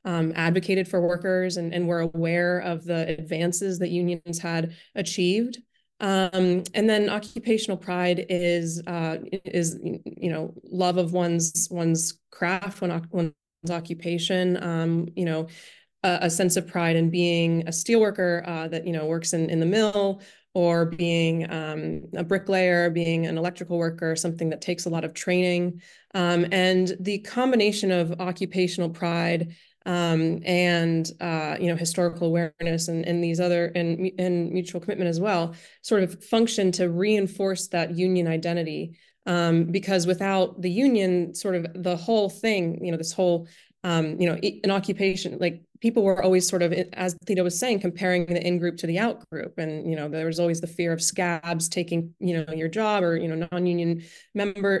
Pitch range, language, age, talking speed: 170-185 Hz, English, 20-39, 175 wpm